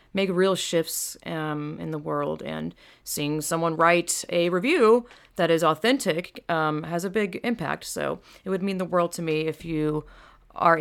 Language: English